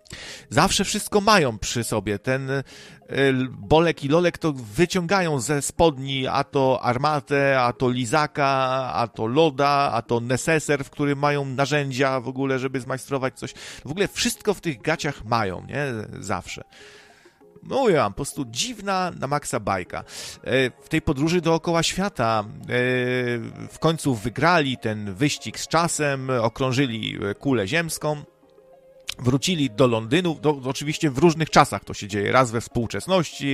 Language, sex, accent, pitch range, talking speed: Polish, male, native, 125-160 Hz, 145 wpm